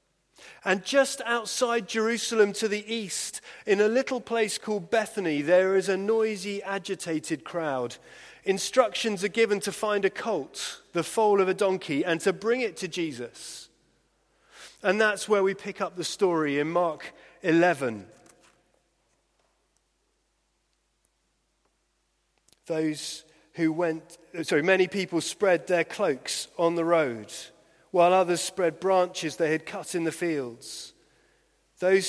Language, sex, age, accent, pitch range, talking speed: English, male, 30-49, British, 165-210 Hz, 135 wpm